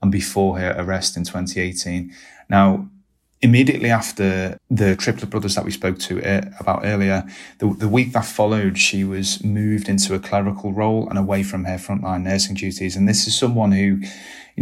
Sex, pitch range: male, 95-105 Hz